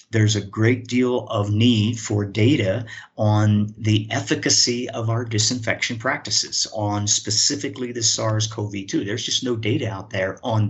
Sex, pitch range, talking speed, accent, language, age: male, 100-115 Hz, 145 wpm, American, English, 50-69